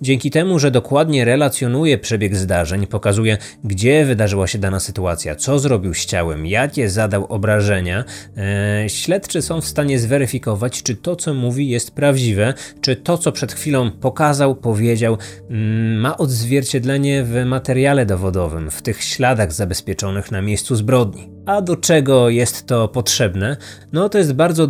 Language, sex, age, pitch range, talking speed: Polish, male, 20-39, 105-145 Hz, 145 wpm